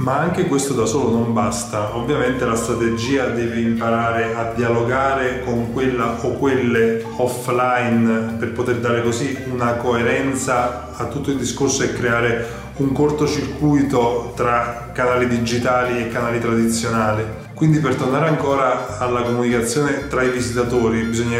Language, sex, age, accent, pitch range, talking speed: Italian, male, 20-39, native, 120-130 Hz, 135 wpm